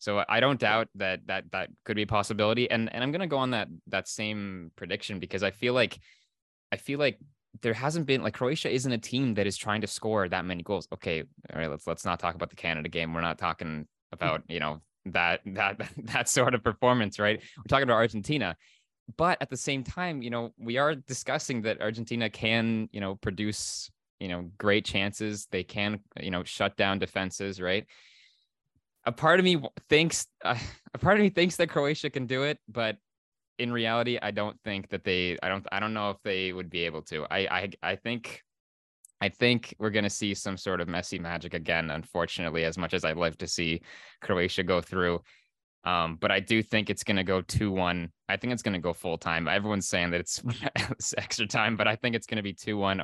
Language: English